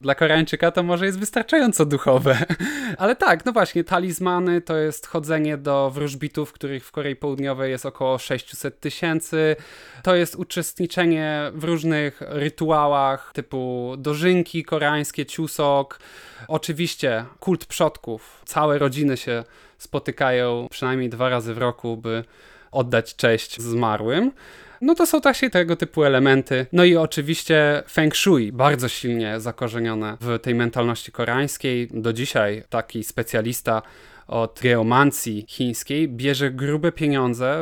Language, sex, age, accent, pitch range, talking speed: Polish, male, 20-39, native, 120-160 Hz, 130 wpm